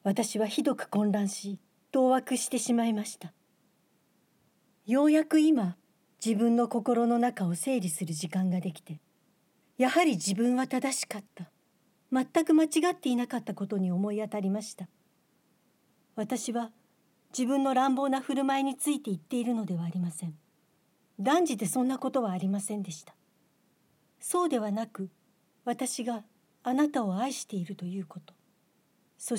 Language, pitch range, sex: Japanese, 195-265 Hz, female